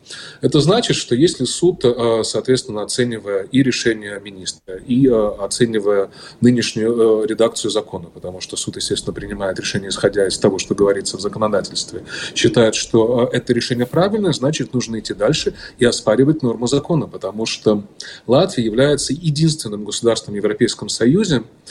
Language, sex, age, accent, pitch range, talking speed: Russian, male, 30-49, native, 110-145 Hz, 140 wpm